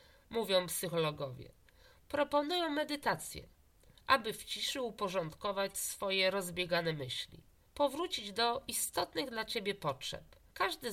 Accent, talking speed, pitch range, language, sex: native, 100 wpm, 185-280 Hz, Polish, female